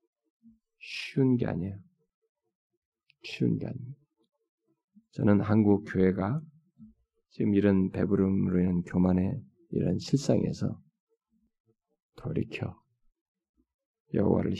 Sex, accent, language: male, native, Korean